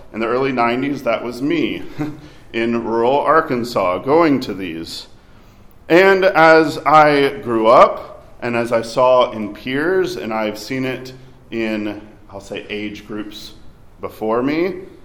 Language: English